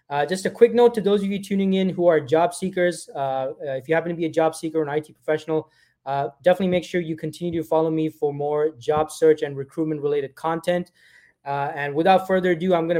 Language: English